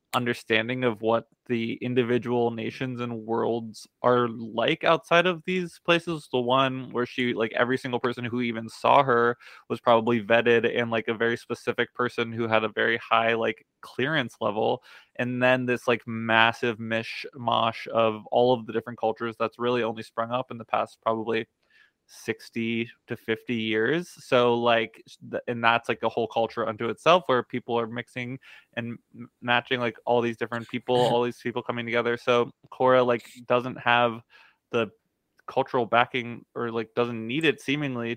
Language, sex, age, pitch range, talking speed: English, male, 20-39, 115-125 Hz, 170 wpm